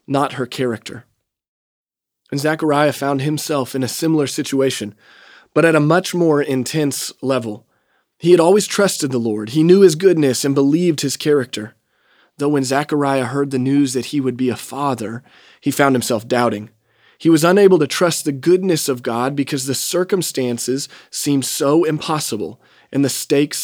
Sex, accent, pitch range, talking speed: male, American, 125-160 Hz, 170 wpm